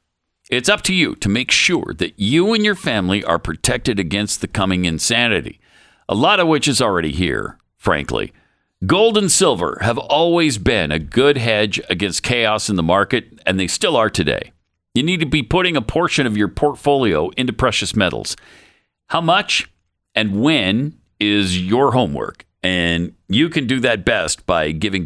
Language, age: English, 50-69